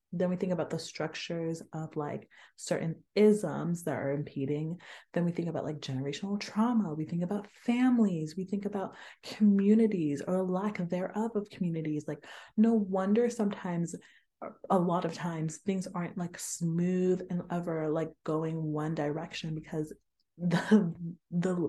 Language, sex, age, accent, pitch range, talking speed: English, female, 20-39, American, 155-190 Hz, 150 wpm